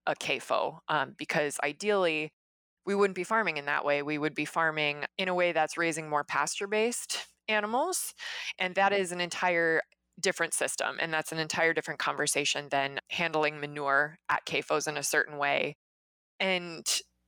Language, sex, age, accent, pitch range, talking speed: English, female, 20-39, American, 150-190 Hz, 165 wpm